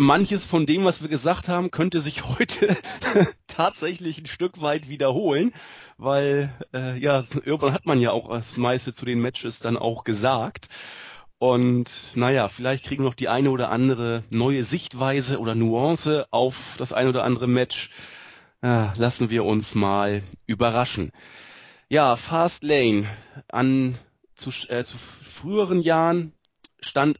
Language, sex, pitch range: German, male, 120-150 Hz